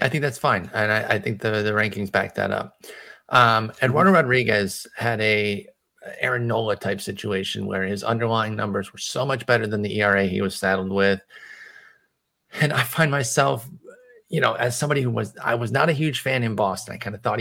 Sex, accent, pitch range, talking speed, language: male, American, 105-140 Hz, 205 wpm, English